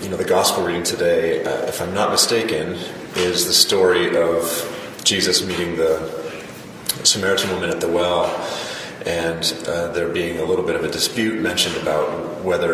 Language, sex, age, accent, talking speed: English, male, 30-49, American, 170 wpm